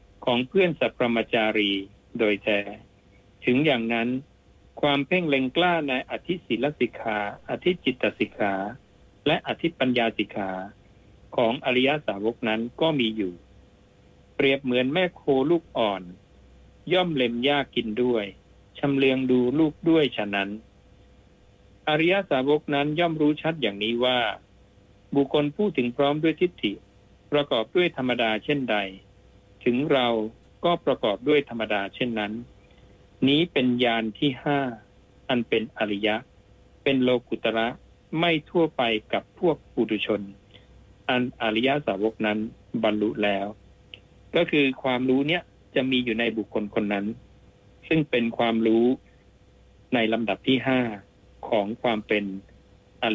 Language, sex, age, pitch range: Thai, male, 60-79, 100-135 Hz